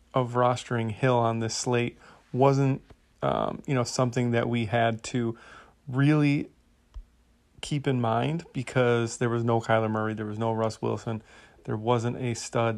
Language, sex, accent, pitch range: English, male, American, 110-130 Hz